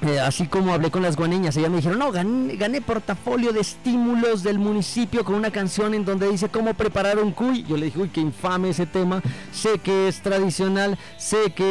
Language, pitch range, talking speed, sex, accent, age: Spanish, 160-200 Hz, 215 wpm, male, Mexican, 30-49